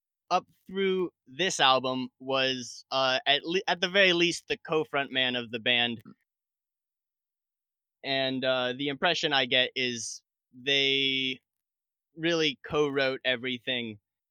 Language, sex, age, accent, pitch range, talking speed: English, male, 20-39, American, 120-150 Hz, 115 wpm